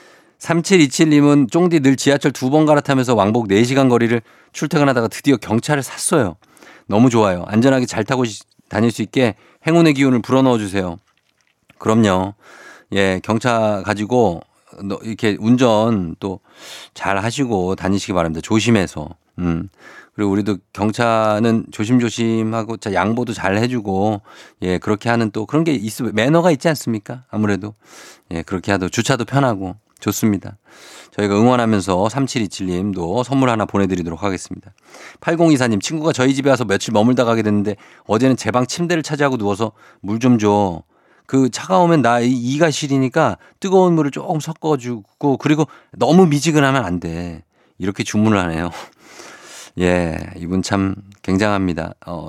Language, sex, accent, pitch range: Korean, male, native, 100-135 Hz